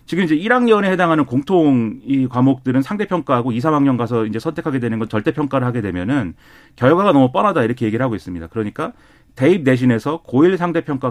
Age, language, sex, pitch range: 40-59, Korean, male, 120-165 Hz